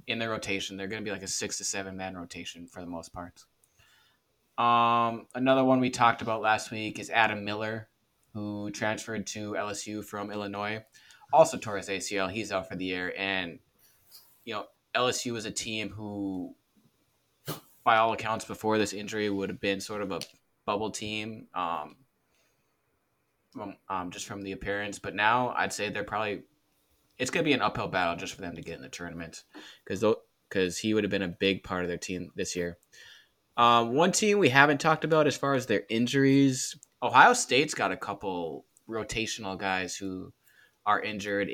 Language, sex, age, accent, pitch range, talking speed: English, male, 20-39, American, 95-110 Hz, 185 wpm